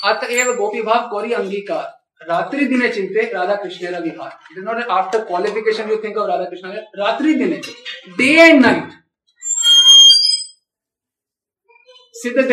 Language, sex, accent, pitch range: Hindi, male, native, 200-270 Hz